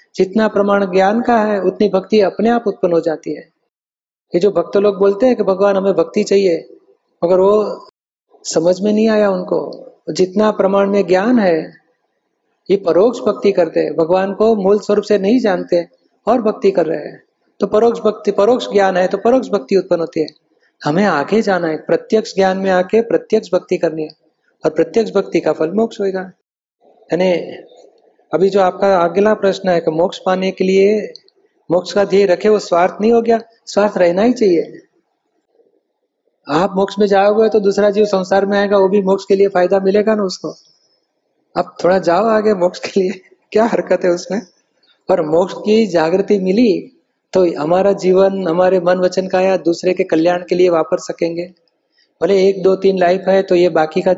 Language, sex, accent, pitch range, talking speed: Hindi, male, native, 180-210 Hz, 160 wpm